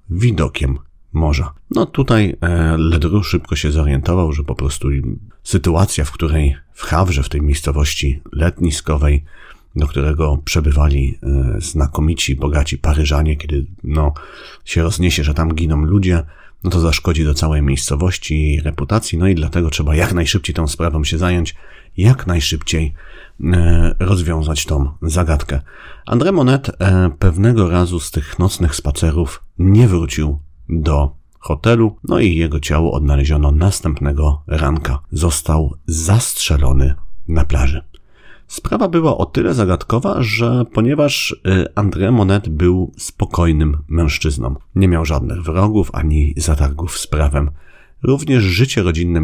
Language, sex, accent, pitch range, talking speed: Polish, male, native, 75-90 Hz, 125 wpm